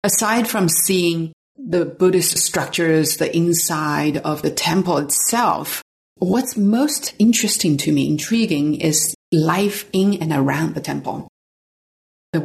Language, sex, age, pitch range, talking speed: English, female, 30-49, 145-170 Hz, 125 wpm